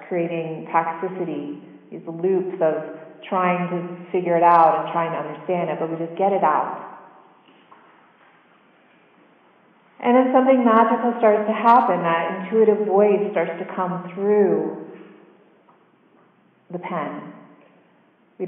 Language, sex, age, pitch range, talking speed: English, female, 30-49, 170-210 Hz, 125 wpm